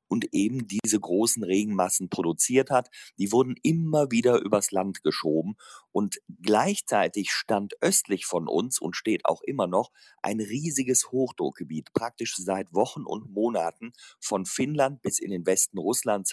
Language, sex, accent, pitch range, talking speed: German, male, German, 90-130 Hz, 145 wpm